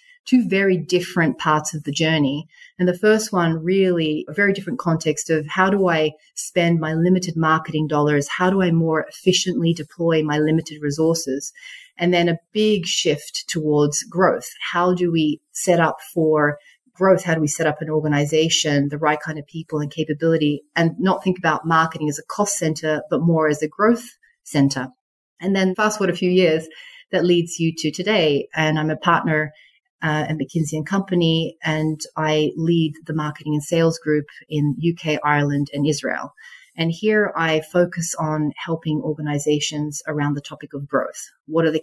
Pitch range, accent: 150-180 Hz, Australian